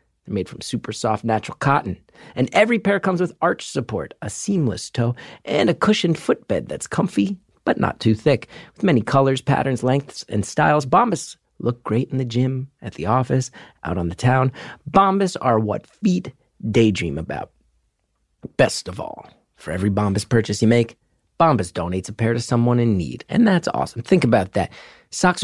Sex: male